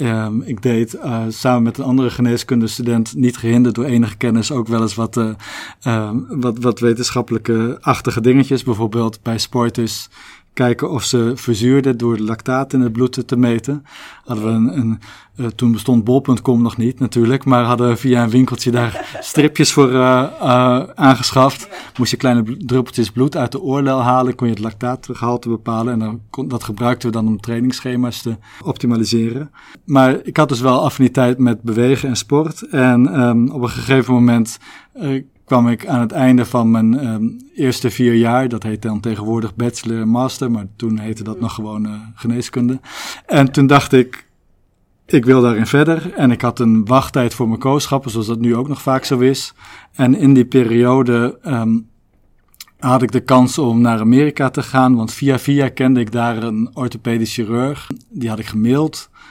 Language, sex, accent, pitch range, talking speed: Dutch, male, Dutch, 115-130 Hz, 180 wpm